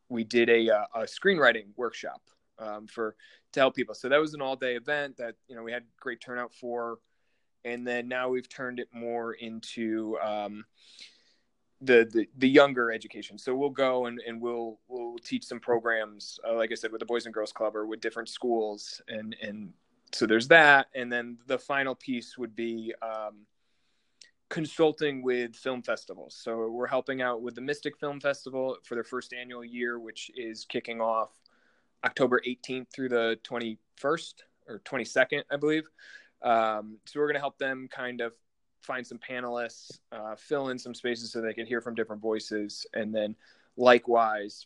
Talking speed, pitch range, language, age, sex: 180 wpm, 110-125 Hz, English, 20-39, male